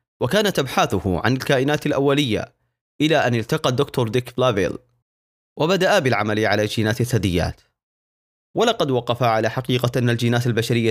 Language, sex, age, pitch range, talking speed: Arabic, male, 30-49, 115-155 Hz, 125 wpm